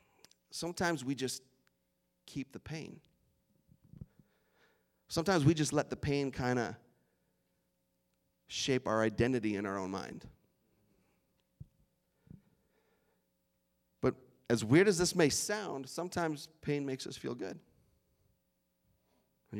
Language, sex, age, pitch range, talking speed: English, male, 40-59, 110-170 Hz, 105 wpm